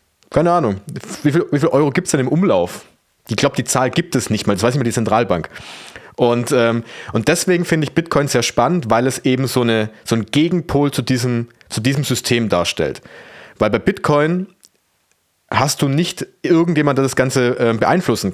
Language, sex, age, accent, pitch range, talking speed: German, male, 30-49, German, 115-145 Hz, 200 wpm